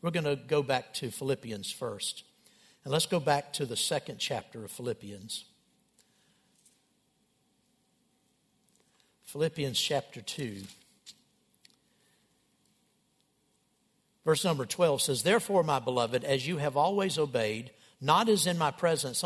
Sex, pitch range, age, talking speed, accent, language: male, 145-215 Hz, 60-79, 120 wpm, American, English